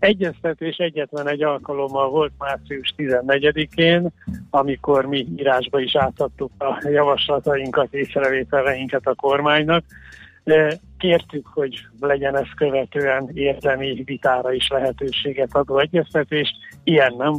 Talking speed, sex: 105 wpm, male